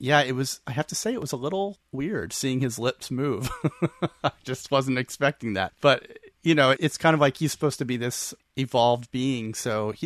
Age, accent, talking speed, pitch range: 30-49, American, 220 wpm, 110-135 Hz